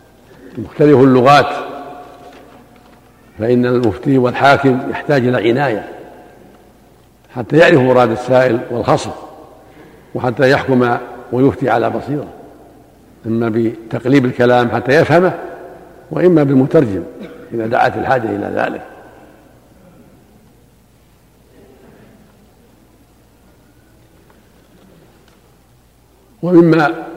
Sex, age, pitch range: male, 60-79, 125-155 Hz